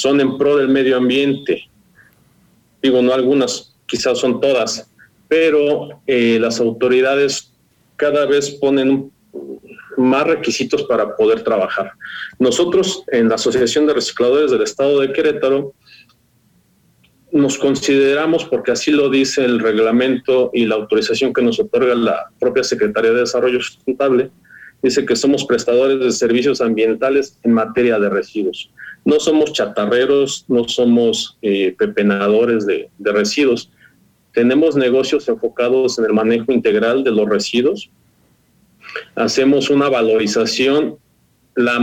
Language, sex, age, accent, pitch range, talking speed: Spanish, male, 40-59, Mexican, 120-145 Hz, 130 wpm